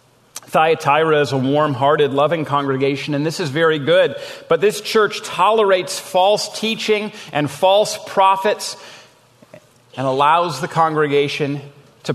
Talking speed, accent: 125 wpm, American